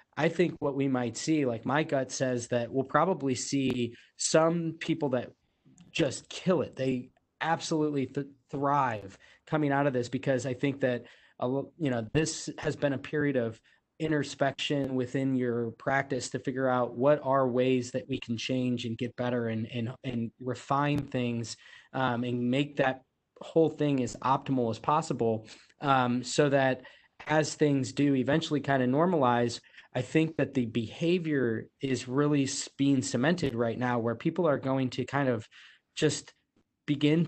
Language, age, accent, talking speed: English, 20-39, American, 165 wpm